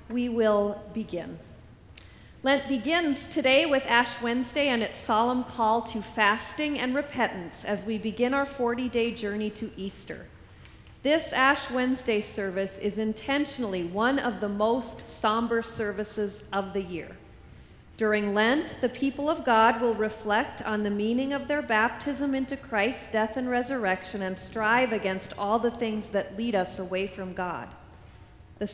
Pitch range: 195-245 Hz